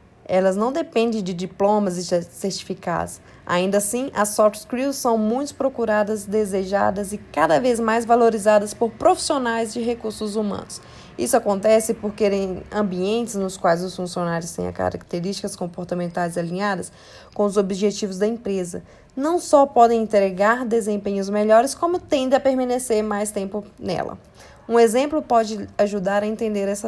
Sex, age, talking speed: female, 20-39, 145 wpm